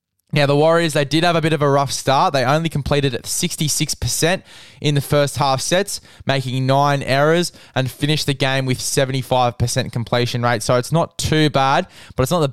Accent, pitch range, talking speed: Australian, 125-150 Hz, 220 wpm